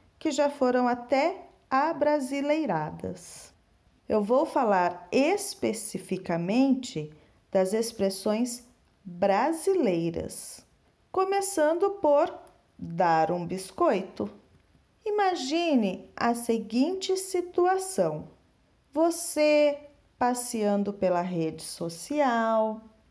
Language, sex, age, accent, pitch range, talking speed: Portuguese, female, 40-59, Brazilian, 210-335 Hz, 70 wpm